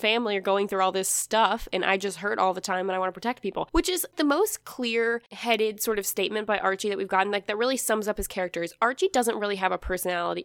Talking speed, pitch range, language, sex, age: 270 wpm, 190-240 Hz, English, female, 10-29